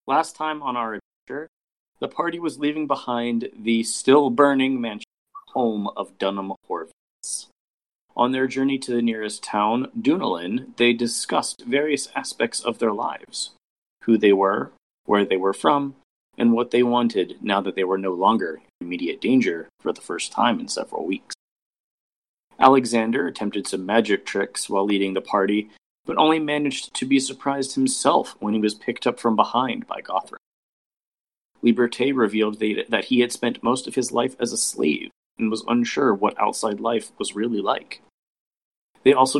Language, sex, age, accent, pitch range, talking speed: English, male, 30-49, American, 110-140 Hz, 165 wpm